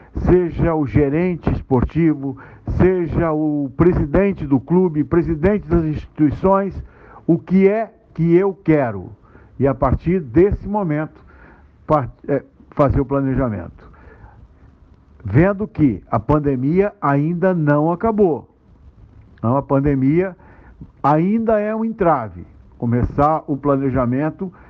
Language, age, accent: Portuguese, 60-79, Brazilian